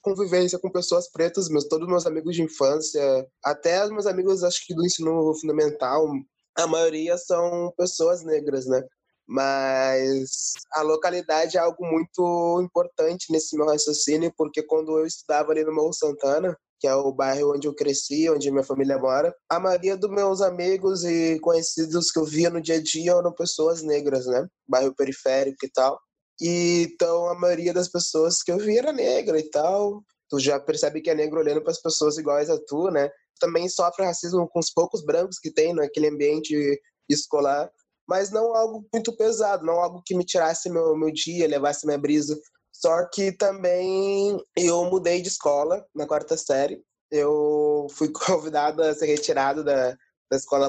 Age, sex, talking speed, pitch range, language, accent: 20-39, male, 180 wpm, 145-175 Hz, Portuguese, Brazilian